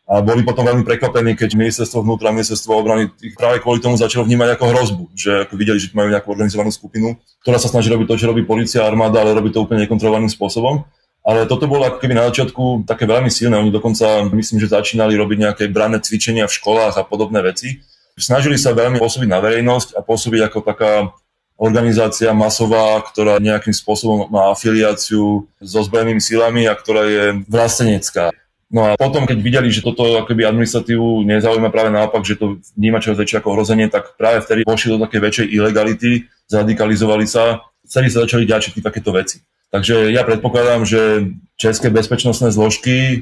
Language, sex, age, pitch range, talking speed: Czech, male, 20-39, 105-120 Hz, 175 wpm